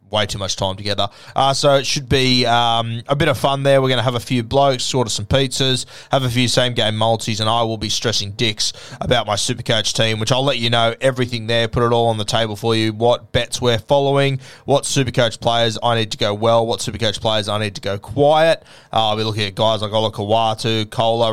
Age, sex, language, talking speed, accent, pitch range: 20-39, male, English, 250 wpm, Australian, 110-130 Hz